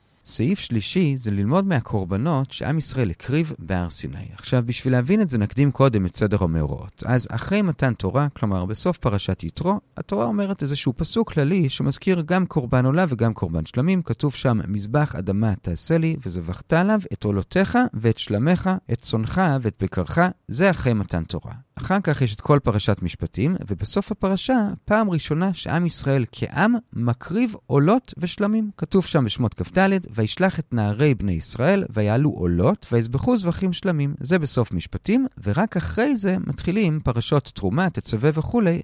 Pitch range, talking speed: 110-180 Hz, 155 wpm